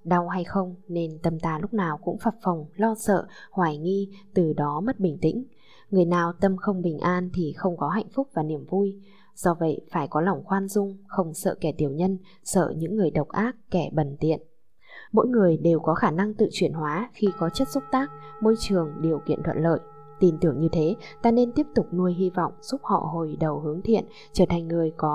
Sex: female